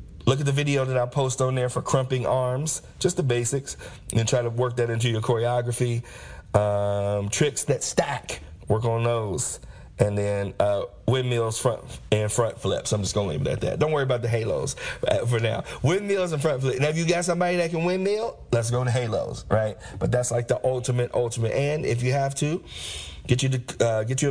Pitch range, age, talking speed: 115-135 Hz, 30-49, 215 wpm